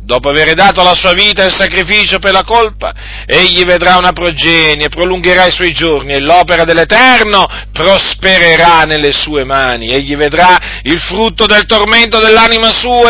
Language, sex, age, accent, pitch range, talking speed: Italian, male, 40-59, native, 155-210 Hz, 160 wpm